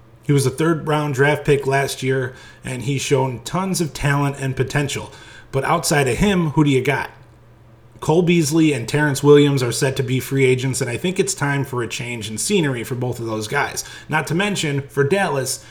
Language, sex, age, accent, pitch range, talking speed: English, male, 30-49, American, 125-150 Hz, 215 wpm